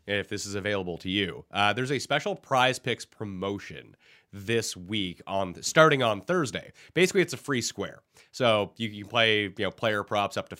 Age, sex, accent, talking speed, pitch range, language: 30-49, male, American, 200 wpm, 100-130 Hz, English